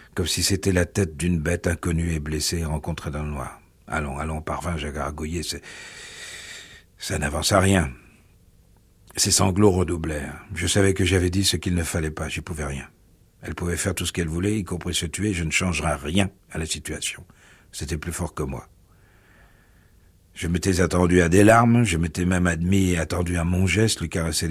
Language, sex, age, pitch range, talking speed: French, male, 60-79, 80-95 Hz, 200 wpm